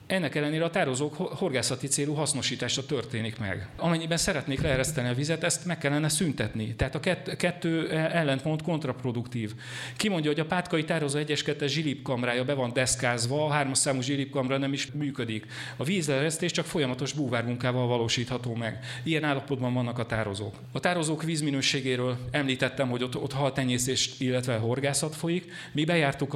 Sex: male